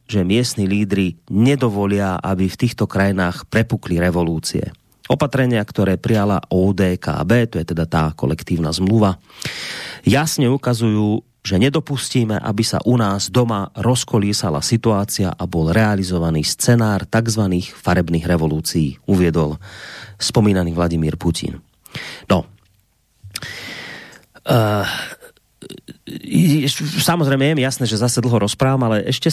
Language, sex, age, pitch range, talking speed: Slovak, male, 30-49, 100-125 Hz, 110 wpm